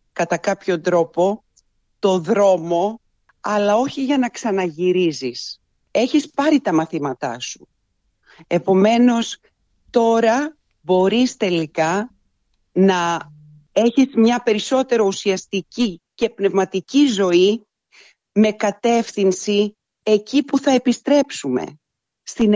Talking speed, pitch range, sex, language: 90 wpm, 180-255 Hz, female, Greek